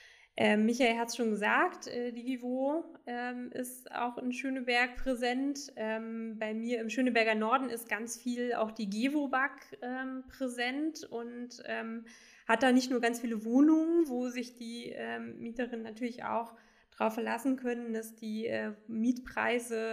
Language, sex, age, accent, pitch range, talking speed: German, female, 20-39, German, 225-255 Hz, 130 wpm